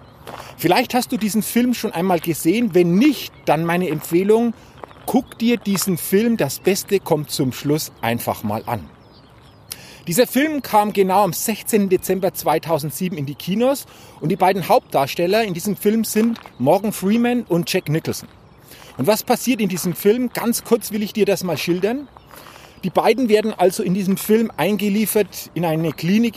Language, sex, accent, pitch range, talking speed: German, male, German, 155-215 Hz, 170 wpm